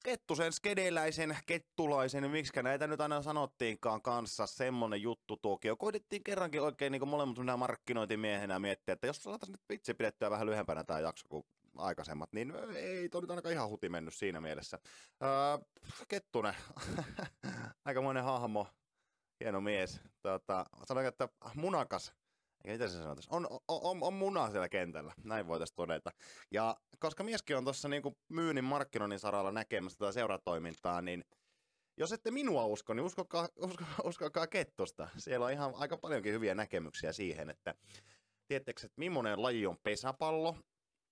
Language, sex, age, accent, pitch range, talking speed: Finnish, male, 20-39, native, 100-150 Hz, 145 wpm